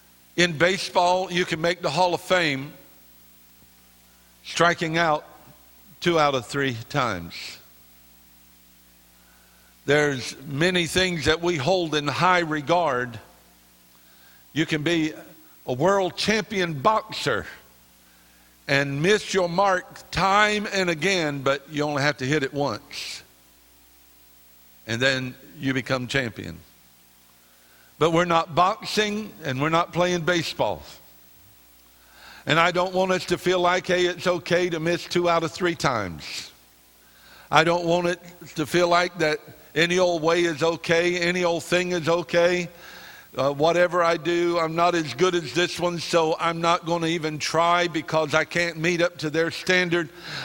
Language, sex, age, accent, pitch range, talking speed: English, male, 60-79, American, 115-175 Hz, 145 wpm